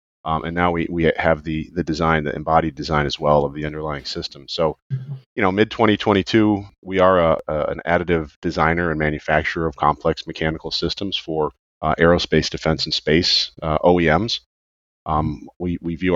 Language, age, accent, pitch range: English, 40-59, American, 75-90 Hz